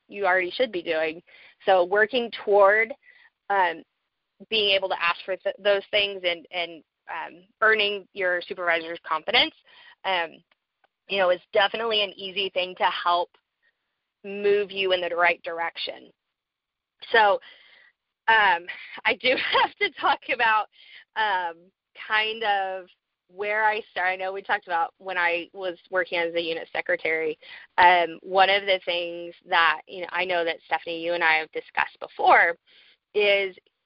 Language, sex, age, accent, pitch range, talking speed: English, female, 30-49, American, 180-255 Hz, 150 wpm